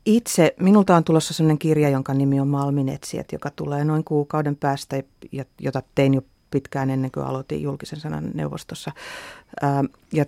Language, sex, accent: Finnish, female, native